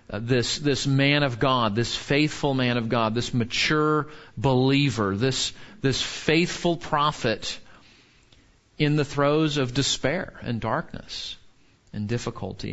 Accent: American